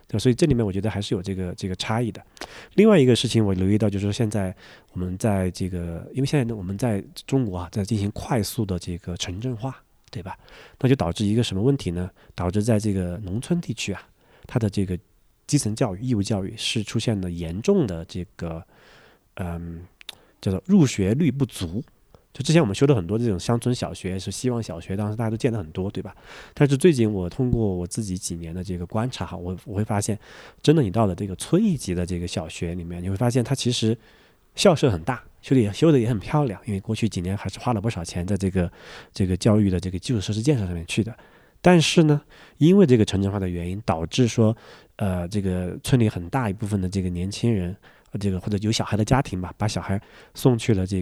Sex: male